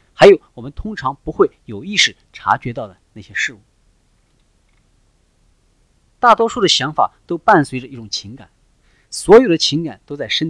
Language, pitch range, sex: Chinese, 110-180 Hz, male